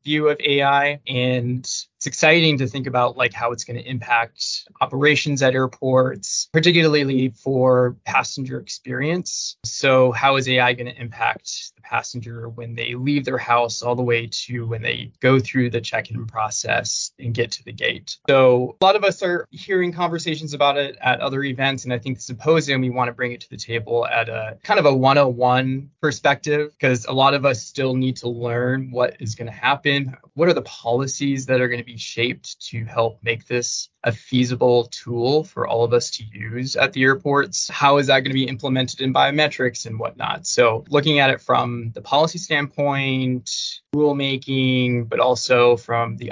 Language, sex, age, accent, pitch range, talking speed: English, male, 20-39, American, 120-140 Hz, 195 wpm